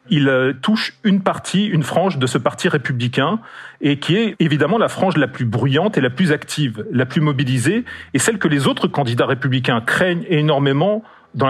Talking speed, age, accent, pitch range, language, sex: 190 wpm, 40-59, French, 135-180 Hz, French, male